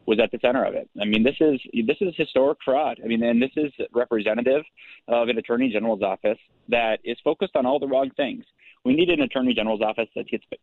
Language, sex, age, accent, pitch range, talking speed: English, male, 30-49, American, 110-135 Hz, 235 wpm